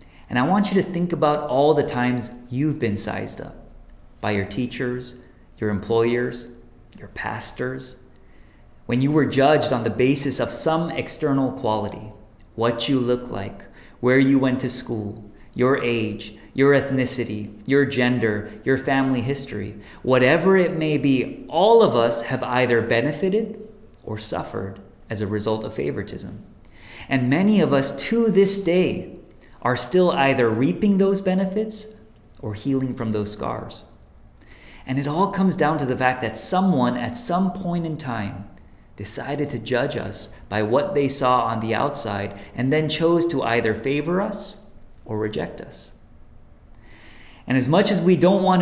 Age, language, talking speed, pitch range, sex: 30-49, English, 160 wpm, 110-150 Hz, male